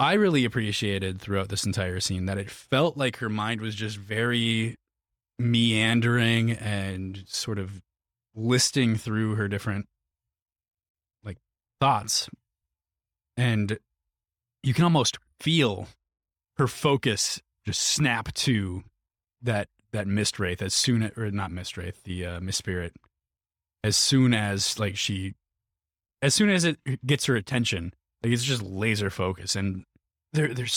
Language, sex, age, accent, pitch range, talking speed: English, male, 20-39, American, 95-120 Hz, 135 wpm